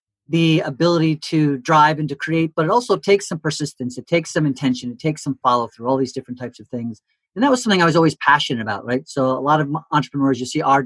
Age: 40-59